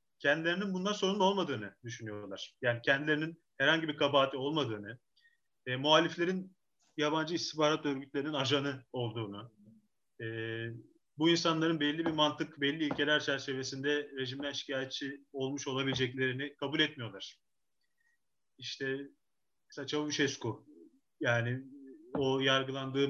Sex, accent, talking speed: male, native, 100 wpm